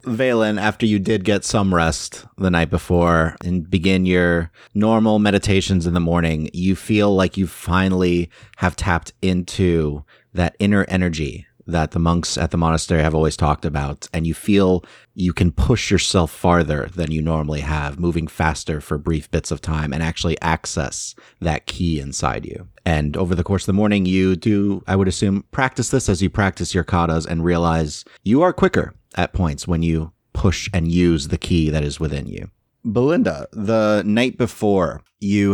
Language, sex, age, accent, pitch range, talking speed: English, male, 30-49, American, 85-100 Hz, 180 wpm